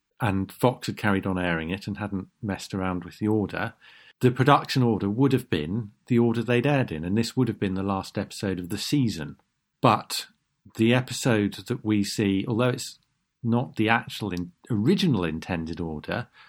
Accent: British